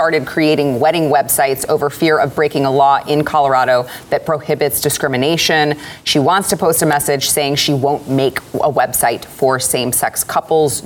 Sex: female